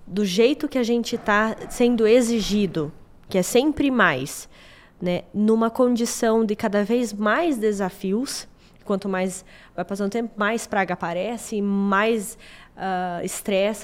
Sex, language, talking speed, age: female, Portuguese, 135 wpm, 10-29